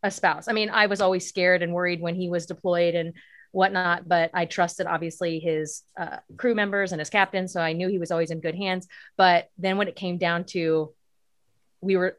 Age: 30-49